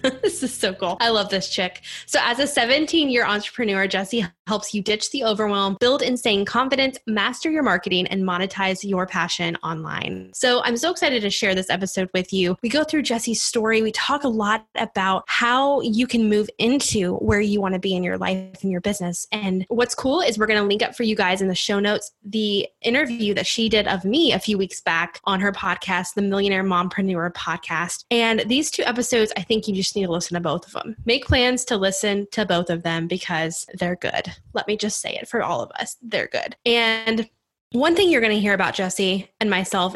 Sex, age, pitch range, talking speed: female, 10-29, 190-235 Hz, 225 wpm